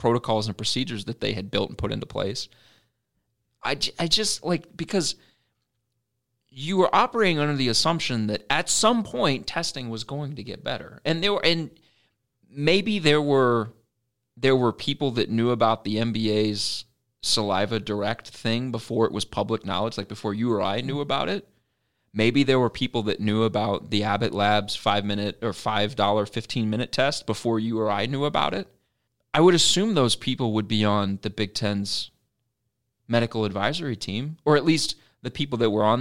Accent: American